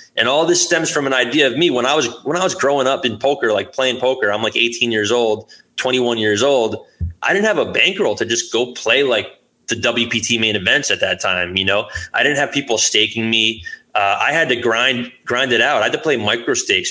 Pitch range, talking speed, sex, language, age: 110-130 Hz, 245 wpm, male, English, 20-39